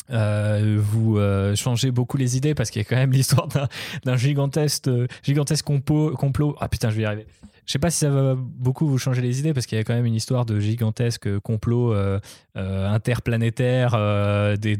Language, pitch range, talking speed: French, 105-125 Hz, 210 wpm